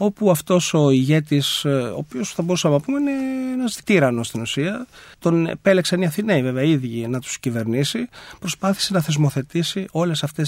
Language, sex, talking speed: Greek, male, 165 wpm